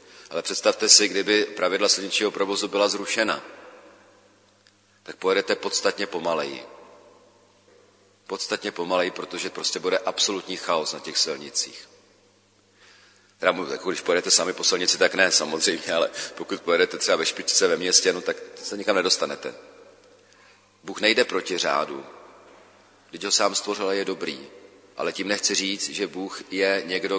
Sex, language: male, Czech